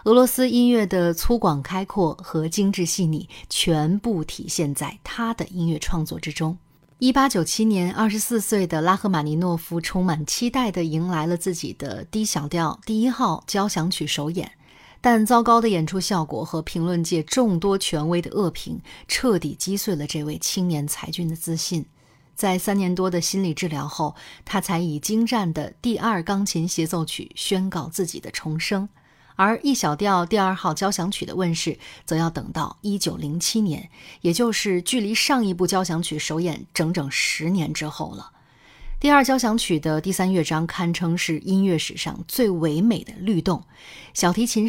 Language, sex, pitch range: Chinese, female, 160-205 Hz